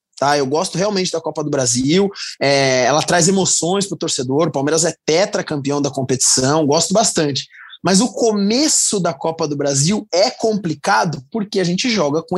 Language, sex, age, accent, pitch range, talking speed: Portuguese, male, 20-39, Brazilian, 150-200 Hz, 175 wpm